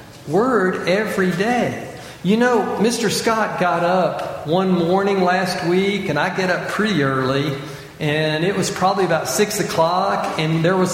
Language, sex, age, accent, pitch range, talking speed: English, male, 50-69, American, 160-215 Hz, 160 wpm